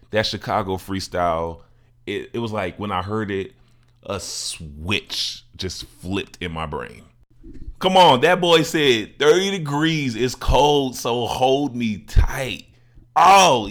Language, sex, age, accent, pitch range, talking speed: English, male, 20-39, American, 95-125 Hz, 140 wpm